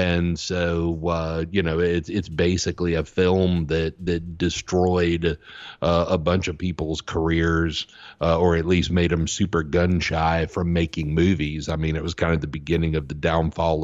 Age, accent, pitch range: 50-69, American, 80-85 Hz